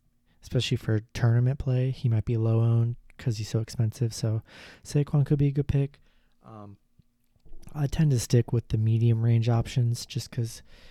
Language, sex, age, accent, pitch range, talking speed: English, male, 20-39, American, 110-125 Hz, 175 wpm